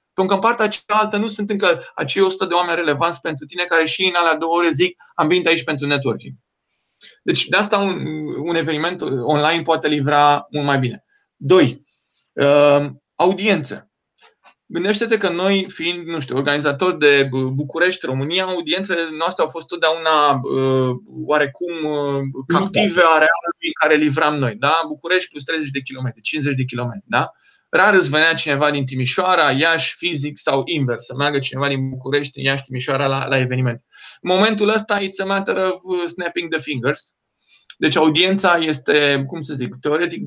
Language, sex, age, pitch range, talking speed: Romanian, male, 20-39, 140-180 Hz, 160 wpm